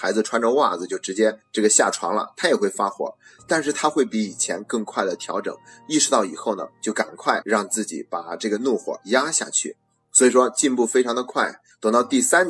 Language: Chinese